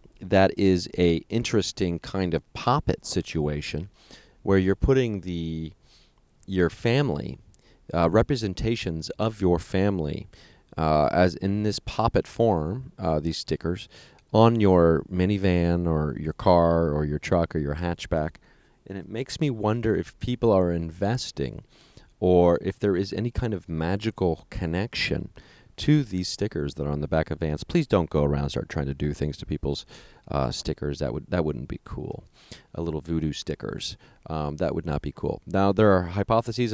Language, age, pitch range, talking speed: English, 30-49, 80-105 Hz, 165 wpm